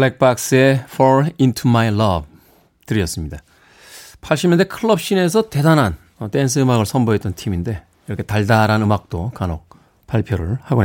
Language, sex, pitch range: Korean, male, 105-170 Hz